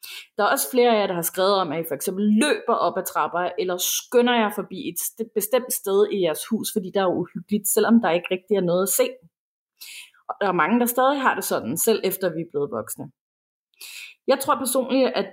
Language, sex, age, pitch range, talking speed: Danish, female, 30-49, 190-240 Hz, 230 wpm